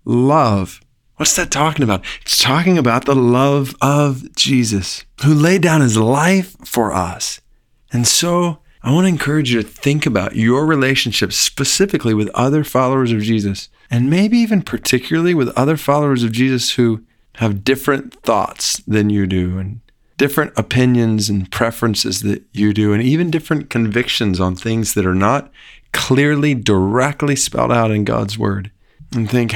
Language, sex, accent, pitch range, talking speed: English, male, American, 105-135 Hz, 160 wpm